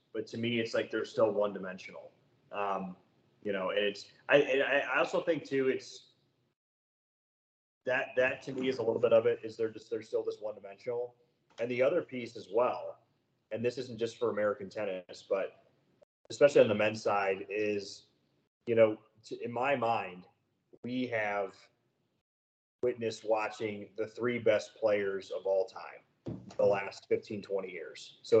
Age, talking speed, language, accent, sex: 30-49, 175 wpm, English, American, male